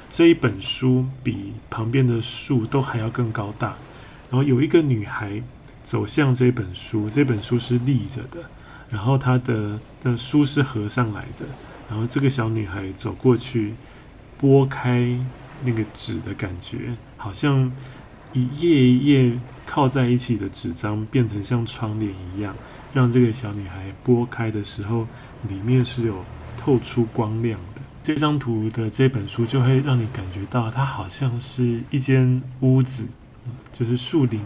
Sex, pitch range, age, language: male, 110-130 Hz, 20-39, Chinese